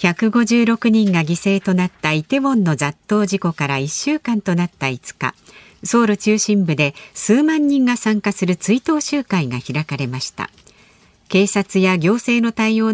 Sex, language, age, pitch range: female, Japanese, 50-69, 160-225 Hz